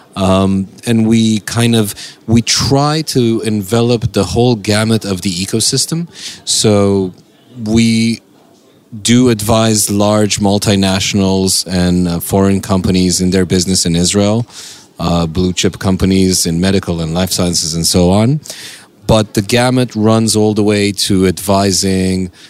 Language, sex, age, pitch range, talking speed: Hebrew, male, 30-49, 95-110 Hz, 135 wpm